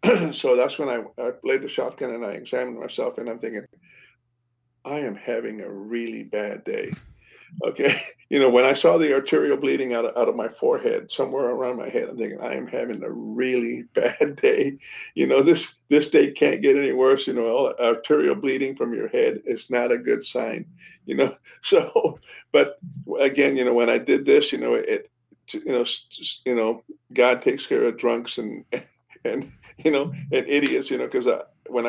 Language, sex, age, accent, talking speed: English, male, 50-69, American, 200 wpm